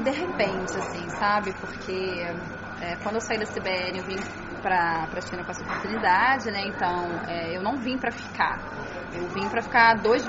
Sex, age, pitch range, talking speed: female, 10-29, 195-245 Hz, 175 wpm